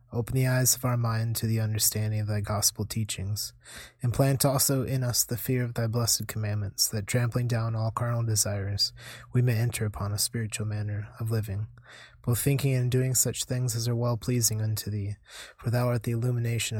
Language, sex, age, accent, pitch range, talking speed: English, male, 20-39, American, 110-125 Hz, 195 wpm